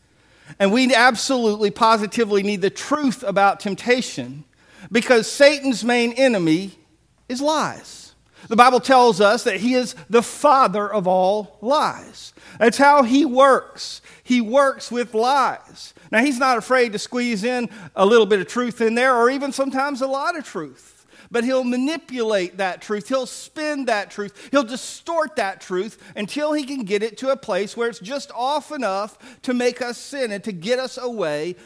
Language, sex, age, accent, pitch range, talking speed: English, male, 50-69, American, 205-260 Hz, 170 wpm